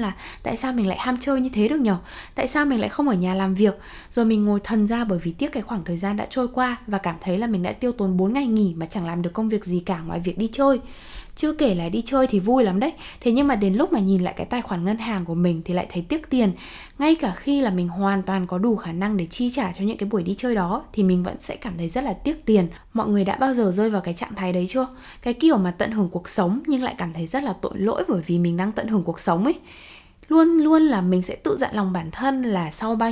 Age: 10-29